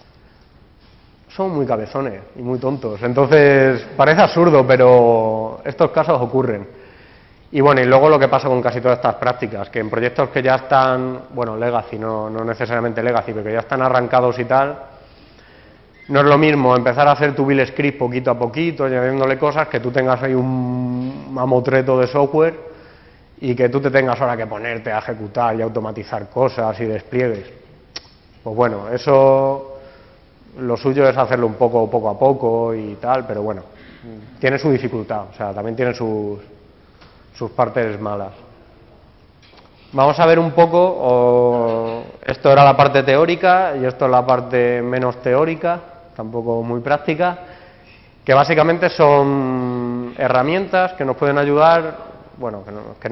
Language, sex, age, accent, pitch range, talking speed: Spanish, male, 30-49, Spanish, 115-140 Hz, 160 wpm